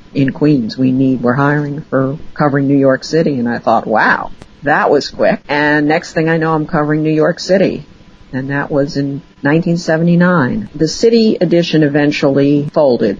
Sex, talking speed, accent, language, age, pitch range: female, 175 wpm, American, English, 50-69, 125-155 Hz